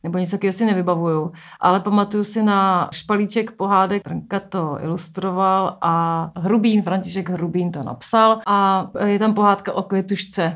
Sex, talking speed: female, 150 wpm